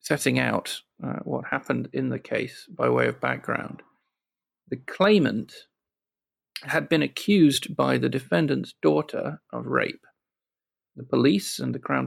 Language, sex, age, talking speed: English, male, 40-59, 140 wpm